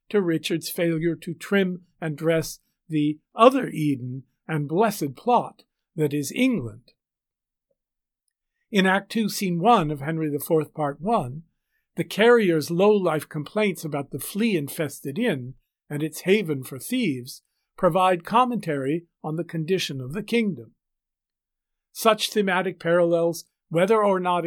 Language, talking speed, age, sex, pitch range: English, 130 wpm, 50-69, male, 150-195 Hz